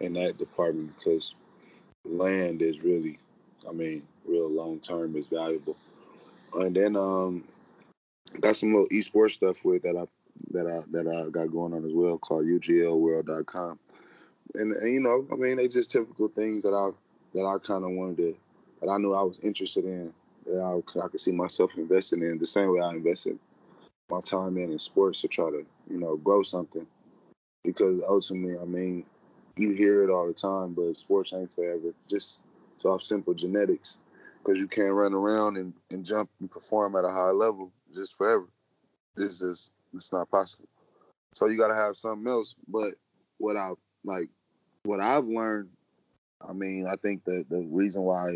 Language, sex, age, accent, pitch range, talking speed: English, male, 20-39, American, 85-105 Hz, 180 wpm